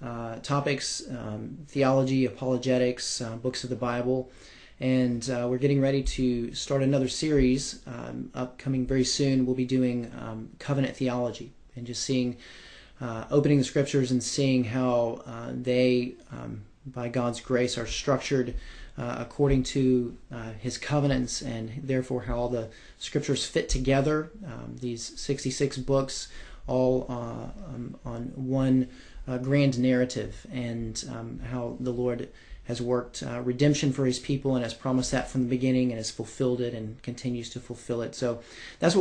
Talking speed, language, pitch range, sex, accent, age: 160 wpm, English, 120-135 Hz, male, American, 30-49